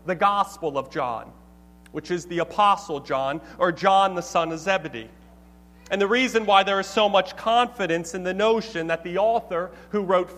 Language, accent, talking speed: English, American, 185 wpm